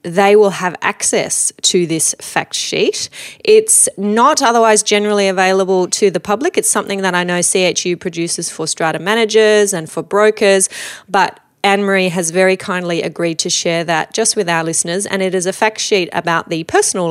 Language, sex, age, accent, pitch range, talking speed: English, female, 30-49, Australian, 180-220 Hz, 180 wpm